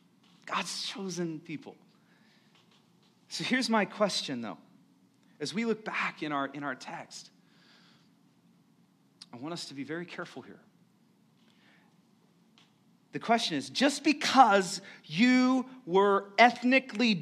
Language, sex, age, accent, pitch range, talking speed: English, male, 40-59, American, 175-240 Hz, 110 wpm